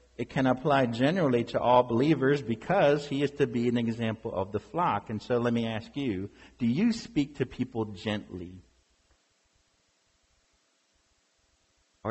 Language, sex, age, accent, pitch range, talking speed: English, male, 50-69, American, 95-145 Hz, 150 wpm